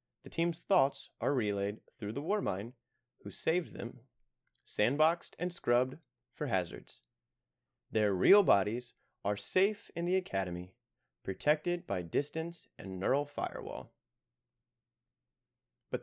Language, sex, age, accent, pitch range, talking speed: English, male, 30-49, American, 115-140 Hz, 115 wpm